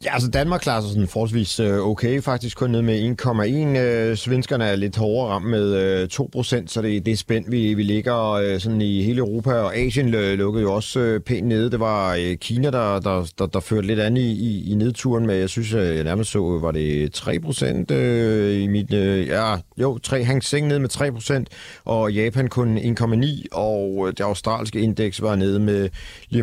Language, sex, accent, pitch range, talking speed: Danish, male, native, 105-135 Hz, 190 wpm